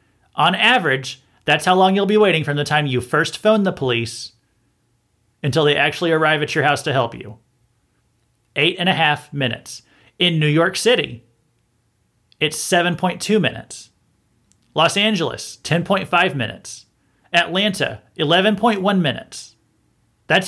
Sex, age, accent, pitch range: male, 30-49, American, 130-190 Hz